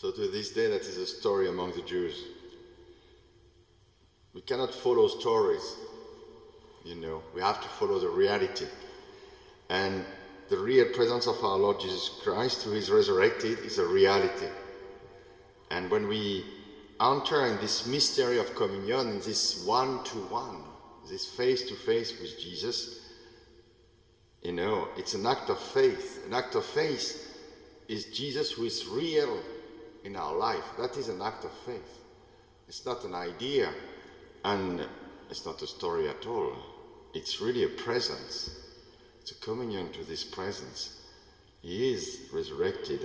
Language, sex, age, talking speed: English, male, 50-69, 145 wpm